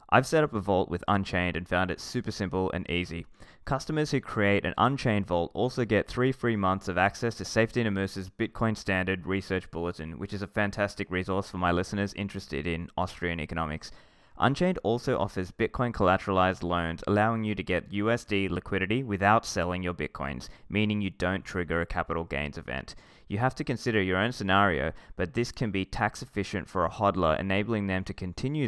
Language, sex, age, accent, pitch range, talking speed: English, male, 20-39, Australian, 90-110 Hz, 190 wpm